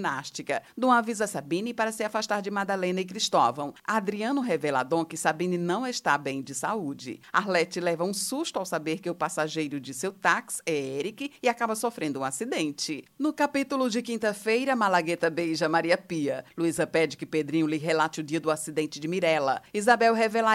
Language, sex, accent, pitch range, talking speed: Portuguese, female, Brazilian, 155-210 Hz, 180 wpm